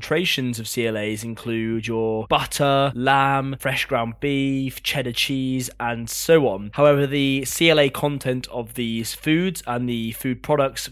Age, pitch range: 20-39, 120-140 Hz